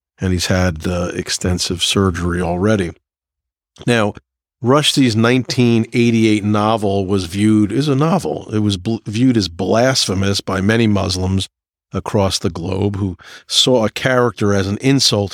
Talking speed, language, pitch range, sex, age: 135 wpm, English, 95-115 Hz, male, 50-69